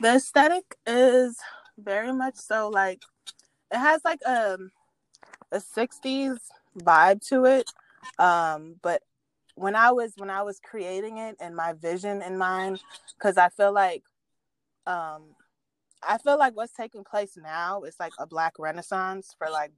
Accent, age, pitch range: American, 20-39, 155-195 Hz